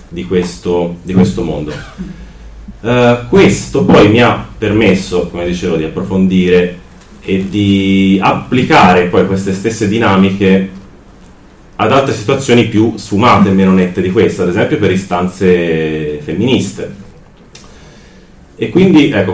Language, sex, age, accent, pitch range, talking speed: Italian, male, 30-49, native, 90-110 Hz, 120 wpm